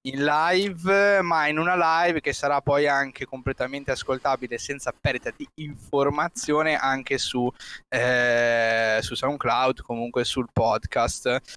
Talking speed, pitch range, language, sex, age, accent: 120 wpm, 125-155 Hz, Italian, male, 20-39, native